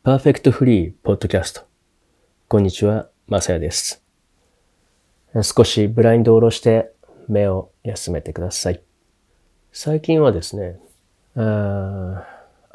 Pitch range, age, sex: 95-130 Hz, 40-59, male